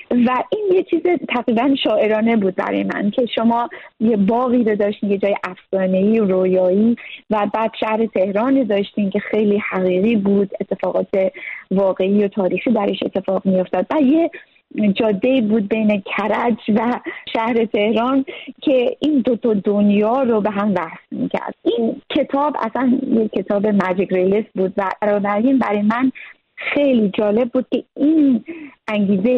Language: Persian